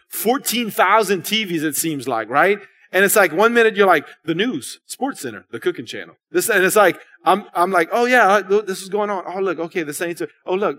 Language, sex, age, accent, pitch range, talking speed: English, male, 30-49, American, 165-220 Hz, 230 wpm